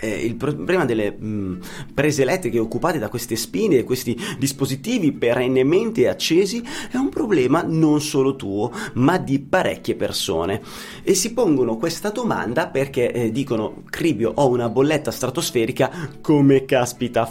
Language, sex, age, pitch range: Italian, male, 30-49, 115-150 Hz